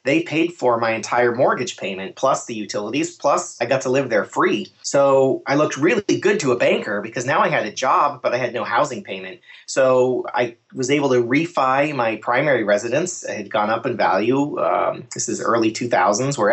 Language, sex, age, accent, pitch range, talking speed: English, male, 30-49, American, 115-145 Hz, 210 wpm